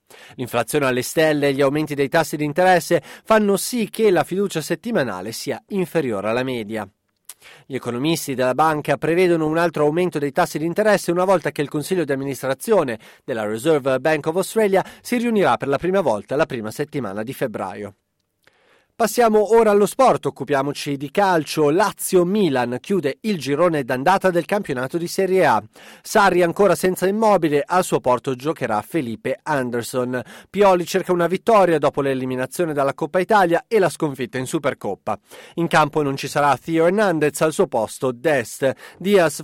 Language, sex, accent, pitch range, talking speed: Italian, male, native, 135-185 Hz, 165 wpm